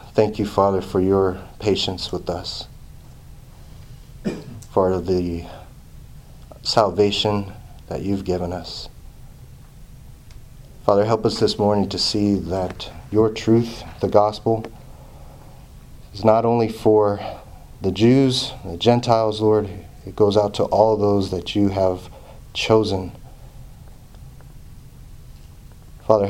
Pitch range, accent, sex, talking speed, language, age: 95-125 Hz, American, male, 105 wpm, English, 30-49